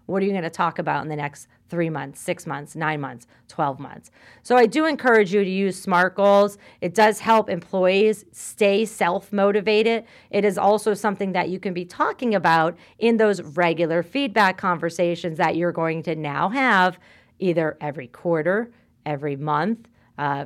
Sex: female